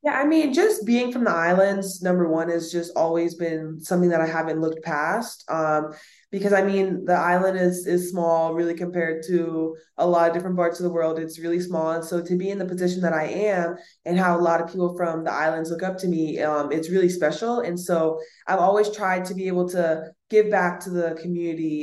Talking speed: 230 wpm